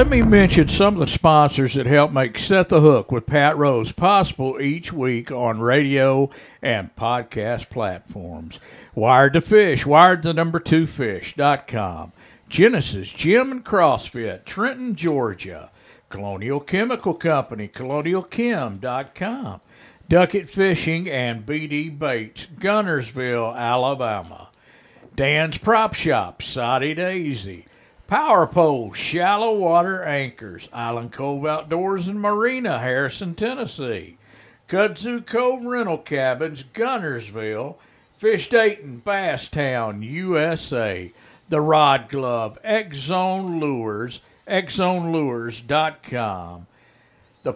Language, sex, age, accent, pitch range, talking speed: English, male, 50-69, American, 125-190 Hz, 105 wpm